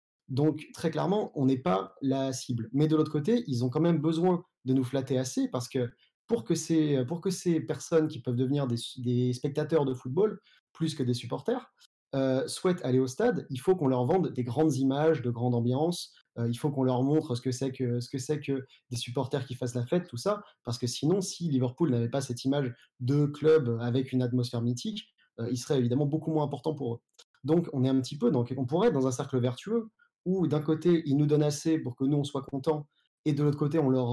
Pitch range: 125-160 Hz